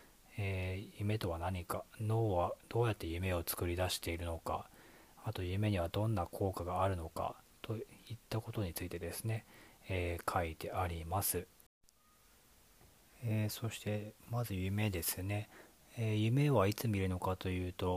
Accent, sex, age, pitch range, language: native, male, 40-59, 90-110 Hz, Japanese